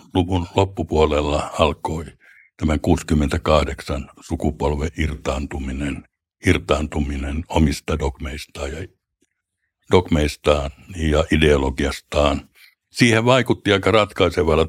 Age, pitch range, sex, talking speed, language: 60-79, 75-90 Hz, male, 75 wpm, Finnish